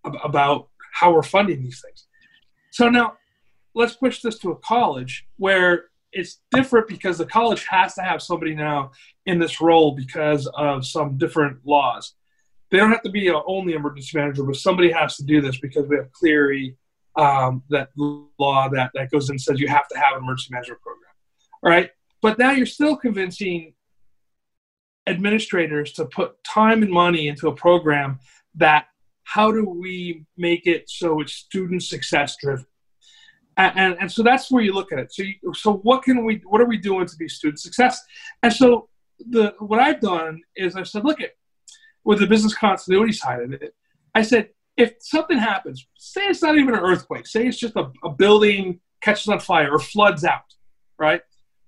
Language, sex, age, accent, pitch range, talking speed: English, male, 40-59, American, 150-220 Hz, 185 wpm